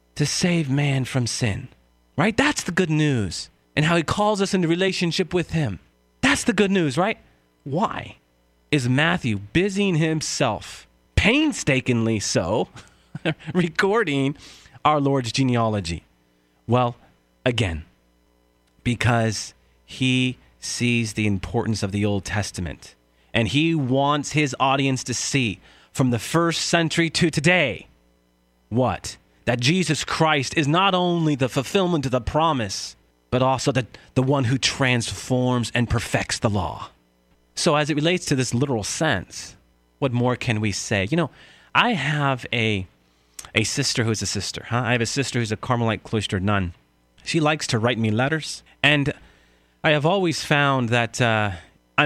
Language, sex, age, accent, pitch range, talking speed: English, male, 30-49, American, 100-150 Hz, 150 wpm